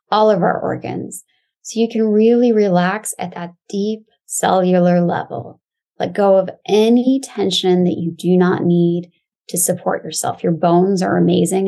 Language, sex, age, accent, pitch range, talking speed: English, female, 20-39, American, 180-215 Hz, 160 wpm